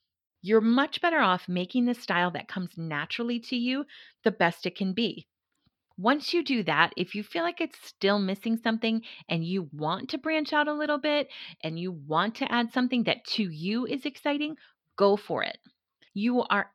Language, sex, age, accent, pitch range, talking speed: English, female, 30-49, American, 170-230 Hz, 195 wpm